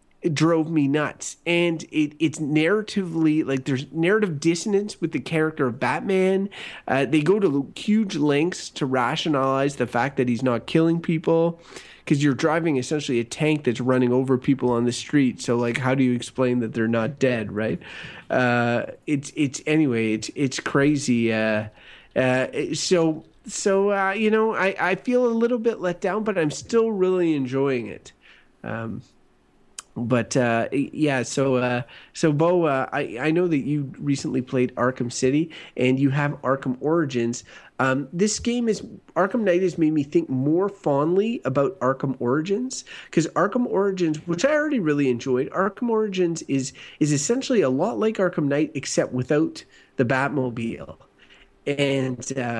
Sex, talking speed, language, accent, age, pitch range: male, 165 wpm, English, American, 30-49, 125-170 Hz